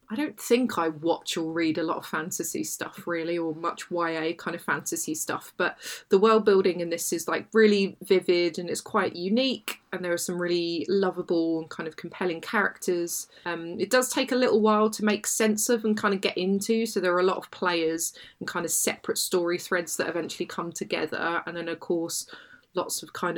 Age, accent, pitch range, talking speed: 20-39, British, 170-210 Hz, 220 wpm